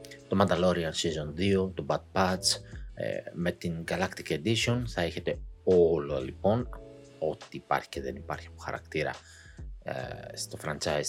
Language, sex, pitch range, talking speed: Greek, male, 85-110 Hz, 130 wpm